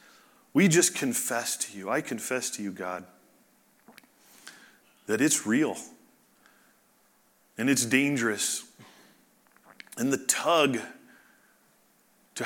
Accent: American